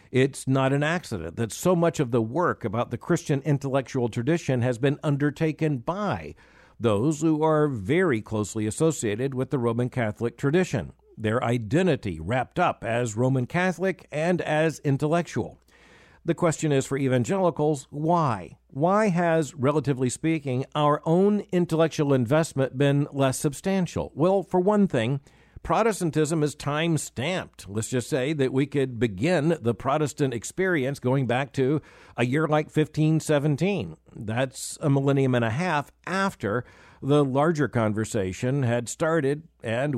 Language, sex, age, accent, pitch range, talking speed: English, male, 50-69, American, 125-165 Hz, 140 wpm